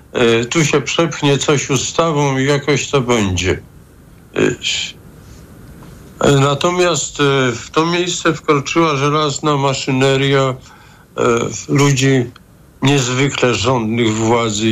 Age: 50-69